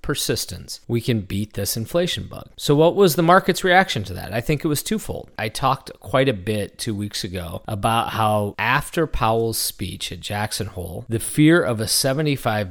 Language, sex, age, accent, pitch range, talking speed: English, male, 30-49, American, 105-145 Hz, 195 wpm